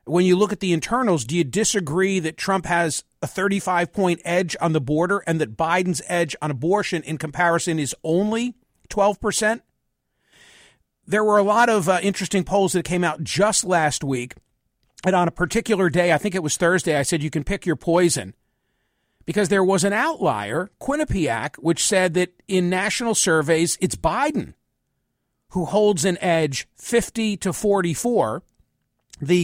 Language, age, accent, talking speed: English, 50-69, American, 165 wpm